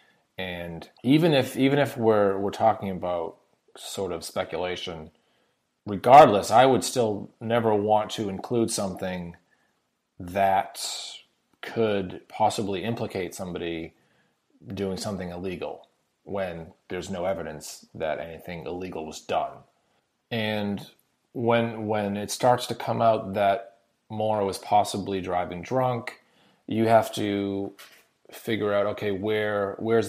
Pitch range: 90-110 Hz